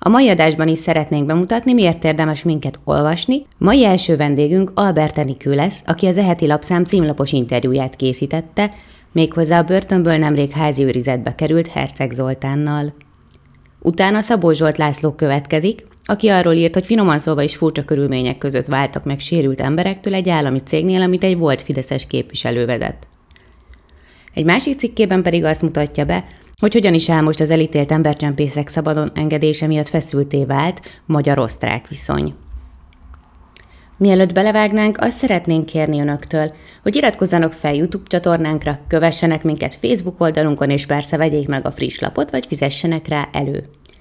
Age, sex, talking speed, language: 20-39, female, 145 wpm, Hungarian